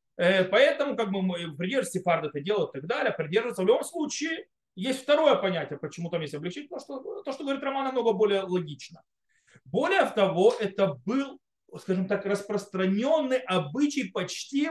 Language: Russian